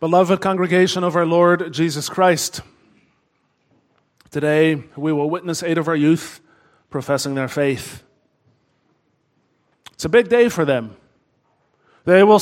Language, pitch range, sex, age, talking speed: English, 140-175 Hz, male, 30-49, 125 wpm